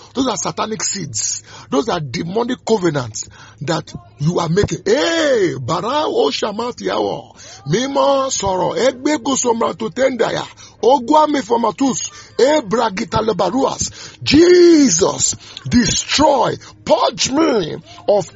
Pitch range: 190-280 Hz